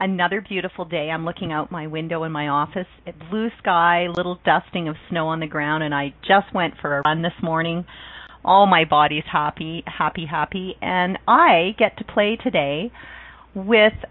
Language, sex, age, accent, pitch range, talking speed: English, female, 40-59, American, 160-230 Hz, 185 wpm